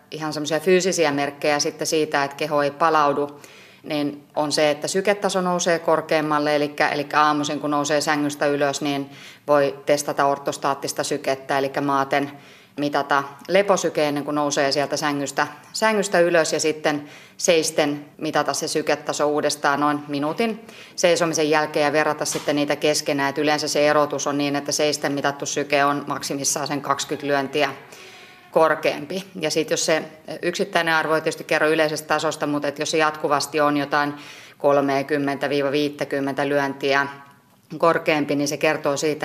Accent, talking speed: native, 140 wpm